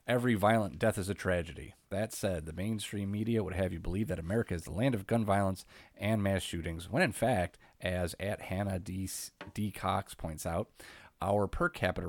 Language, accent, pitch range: English, American, 85-105 Hz